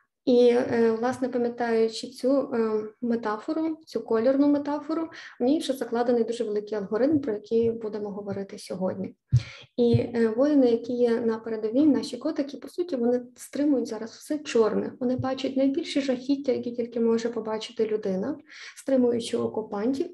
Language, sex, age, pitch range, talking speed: Ukrainian, female, 20-39, 230-265 Hz, 135 wpm